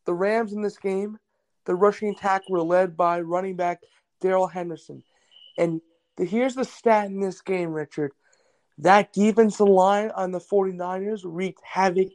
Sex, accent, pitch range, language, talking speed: male, American, 180-225 Hz, English, 155 wpm